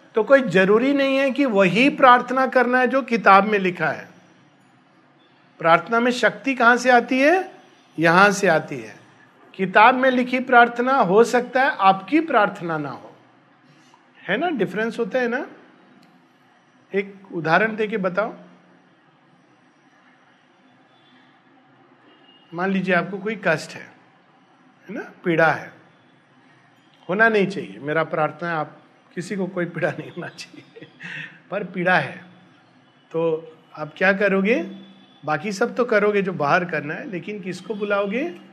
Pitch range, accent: 170-240 Hz, native